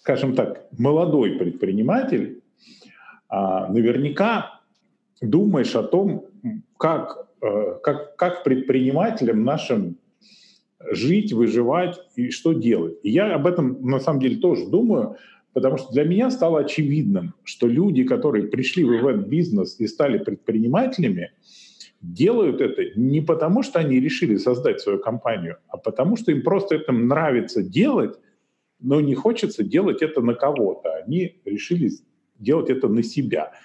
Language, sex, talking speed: Russian, male, 130 wpm